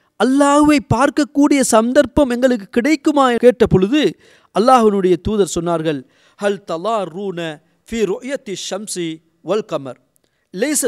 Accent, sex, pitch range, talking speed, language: native, male, 175-265 Hz, 95 wpm, Tamil